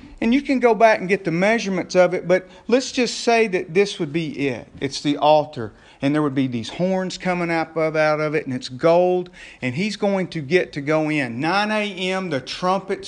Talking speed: 235 wpm